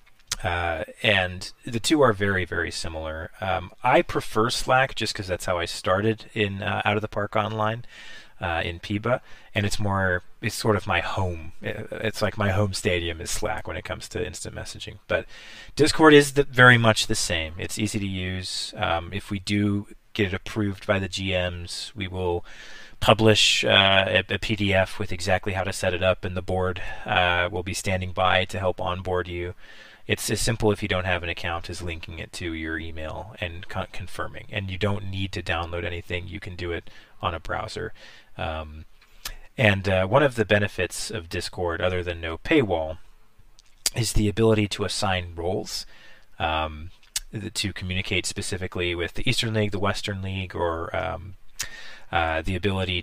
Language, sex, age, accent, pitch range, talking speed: English, male, 30-49, American, 90-110 Hz, 185 wpm